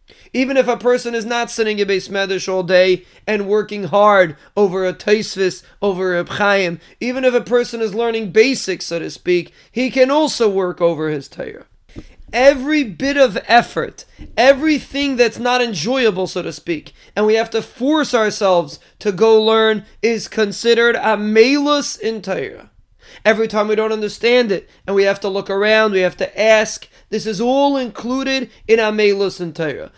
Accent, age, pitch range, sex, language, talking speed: American, 30-49, 200-245 Hz, male, English, 175 wpm